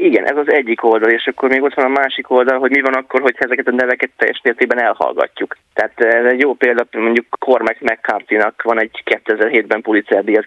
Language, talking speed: Hungarian, 200 wpm